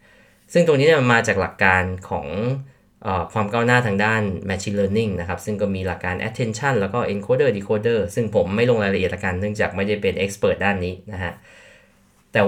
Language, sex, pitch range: Thai, male, 95-120 Hz